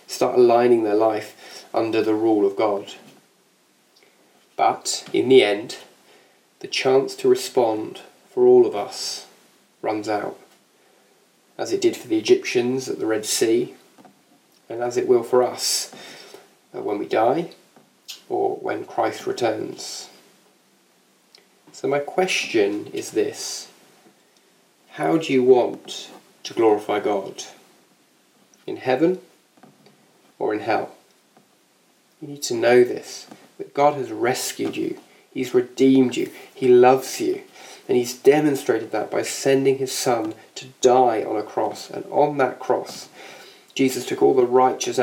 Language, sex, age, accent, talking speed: English, male, 20-39, British, 135 wpm